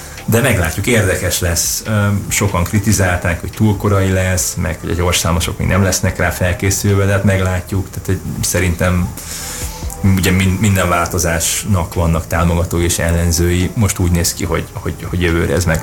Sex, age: male, 20-39